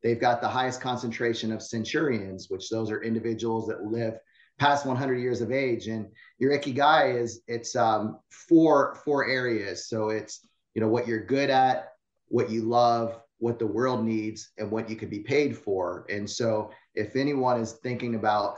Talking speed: 180 wpm